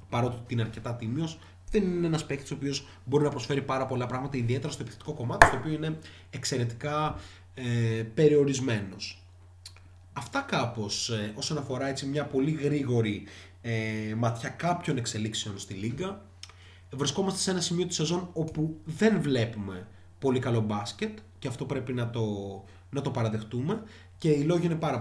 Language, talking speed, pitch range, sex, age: Greek, 145 wpm, 110-145 Hz, male, 20-39